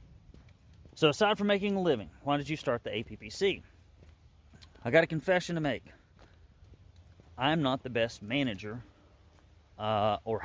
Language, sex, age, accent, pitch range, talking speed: English, male, 30-49, American, 90-130 Hz, 145 wpm